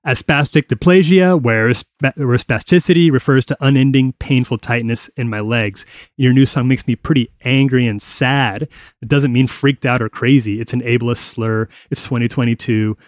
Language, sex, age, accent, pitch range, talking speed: English, male, 30-49, American, 120-155 Hz, 160 wpm